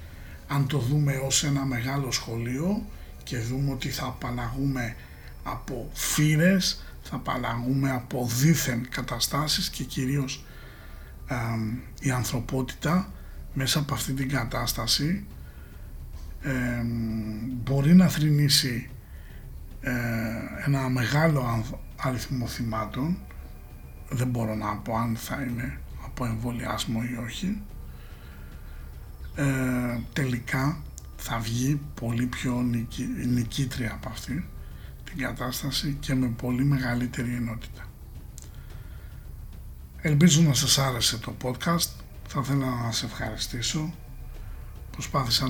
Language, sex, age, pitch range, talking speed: Greek, male, 60-79, 115-135 Hz, 100 wpm